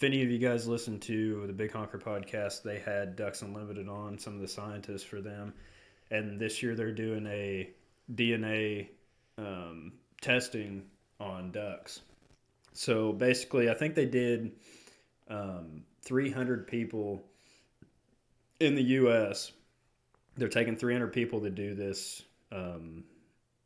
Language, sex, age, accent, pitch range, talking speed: English, male, 20-39, American, 100-120 Hz, 135 wpm